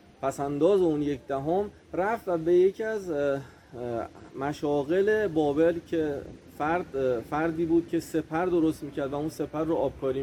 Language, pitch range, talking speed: Persian, 135-170 Hz, 155 wpm